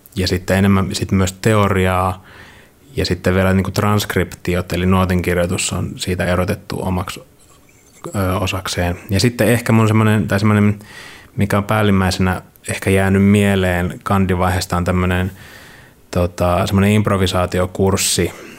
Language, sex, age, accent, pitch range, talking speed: Finnish, male, 20-39, native, 90-100 Hz, 120 wpm